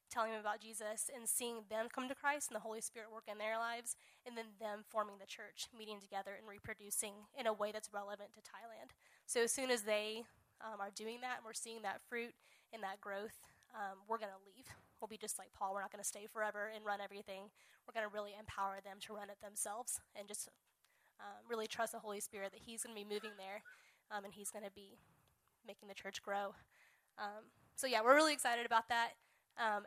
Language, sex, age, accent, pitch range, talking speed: English, female, 10-29, American, 205-225 Hz, 230 wpm